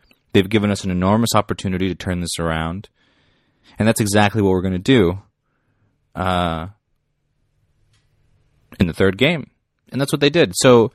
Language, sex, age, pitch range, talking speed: English, male, 30-49, 95-115 Hz, 155 wpm